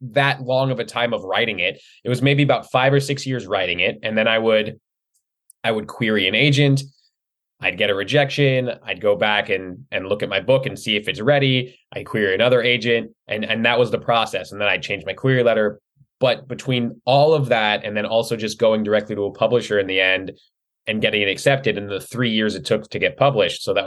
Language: English